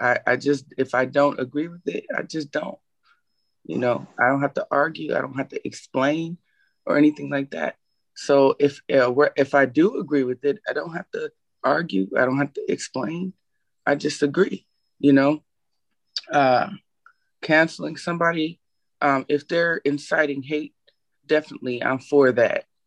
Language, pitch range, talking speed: English, 130-155 Hz, 170 wpm